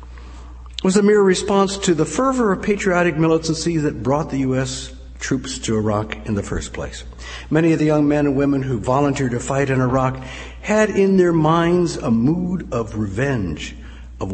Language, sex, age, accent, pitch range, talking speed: English, male, 60-79, American, 90-150 Hz, 180 wpm